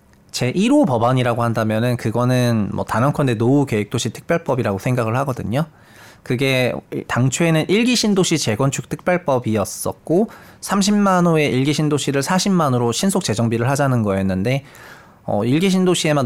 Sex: male